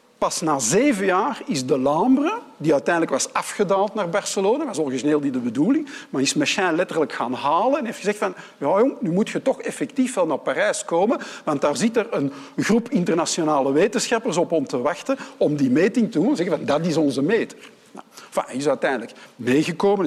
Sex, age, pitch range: male, 50-69, 150-255 Hz